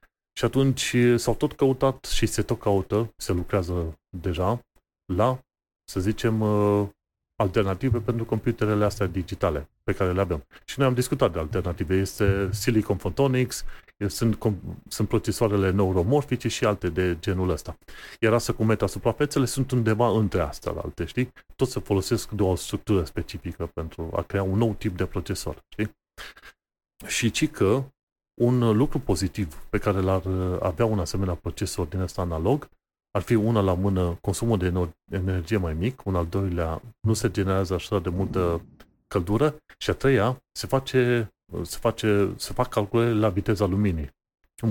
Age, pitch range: 30-49, 95-115 Hz